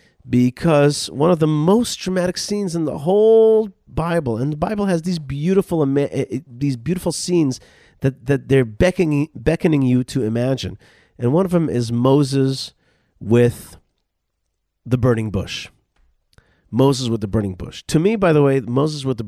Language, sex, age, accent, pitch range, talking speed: English, male, 40-59, American, 105-145 Hz, 160 wpm